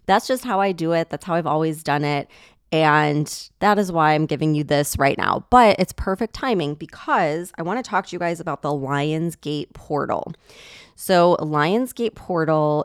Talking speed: 190 wpm